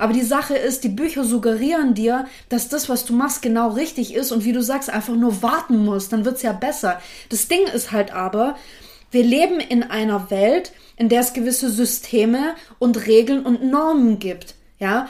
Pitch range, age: 225-265 Hz, 20-39